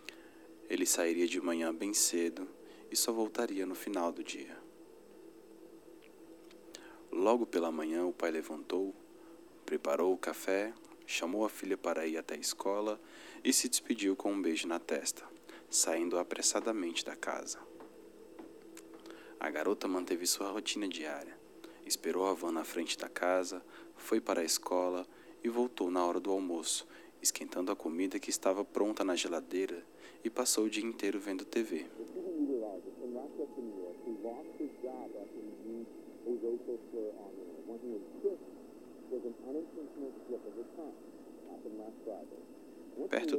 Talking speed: 110 wpm